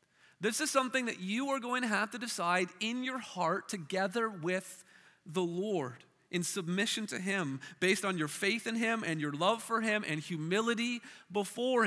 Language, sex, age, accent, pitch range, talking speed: English, male, 30-49, American, 185-230 Hz, 180 wpm